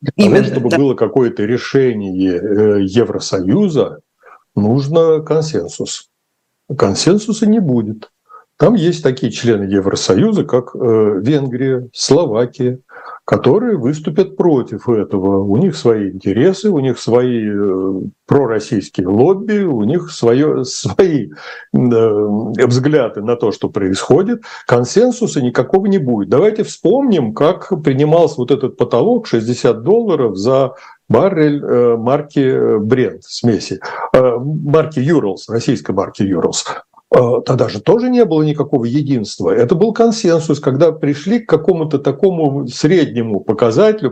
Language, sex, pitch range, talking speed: Russian, male, 125-195 Hz, 115 wpm